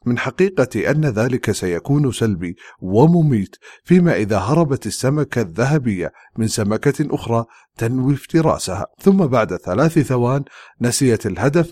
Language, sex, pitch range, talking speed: English, male, 110-150 Hz, 120 wpm